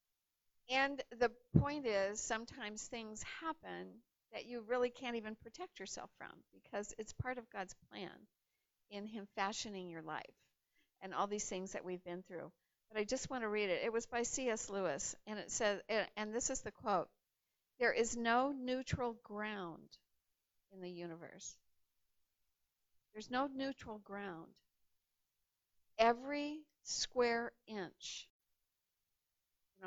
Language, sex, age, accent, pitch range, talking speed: English, female, 50-69, American, 180-240 Hz, 140 wpm